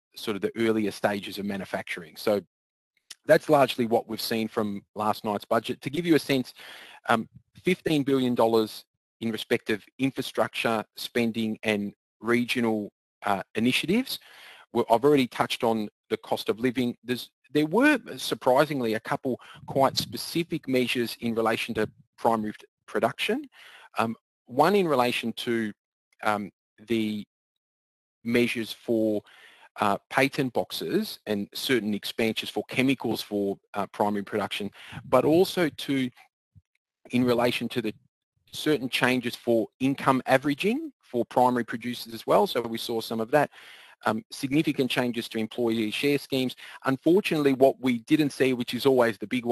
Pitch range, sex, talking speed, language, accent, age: 110-135 Hz, male, 140 wpm, English, Australian, 30-49